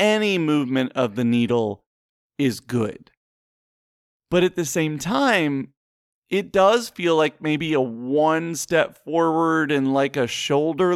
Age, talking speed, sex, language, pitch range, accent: 30-49, 135 wpm, male, English, 130-175 Hz, American